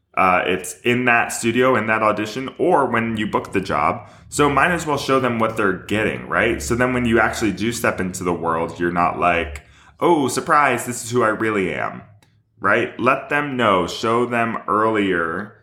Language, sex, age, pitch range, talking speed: English, male, 20-39, 95-120 Hz, 200 wpm